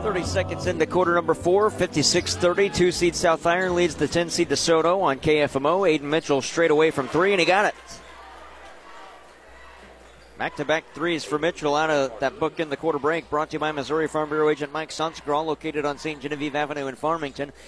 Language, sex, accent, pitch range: English, male, American, 125-155 Hz